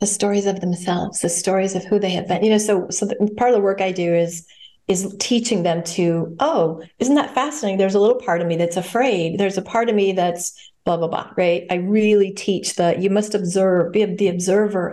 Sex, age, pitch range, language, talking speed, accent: female, 40-59, 180-220 Hz, English, 235 wpm, American